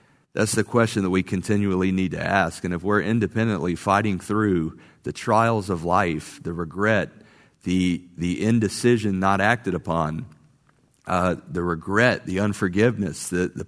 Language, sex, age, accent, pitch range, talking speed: English, male, 40-59, American, 90-110 Hz, 150 wpm